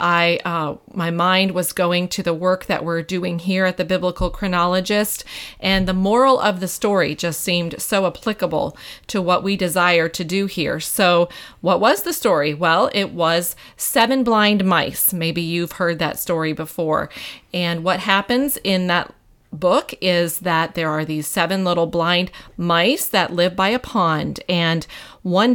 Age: 30-49